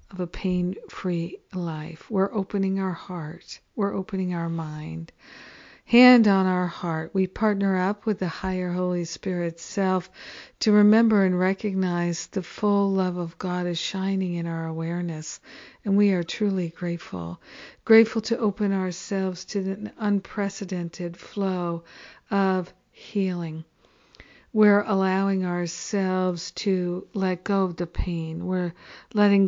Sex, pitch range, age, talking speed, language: female, 175-200 Hz, 50-69, 130 wpm, English